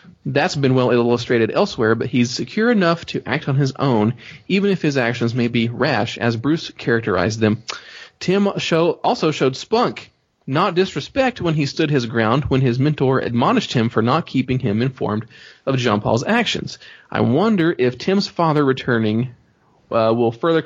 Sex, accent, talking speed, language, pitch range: male, American, 170 wpm, English, 120-155 Hz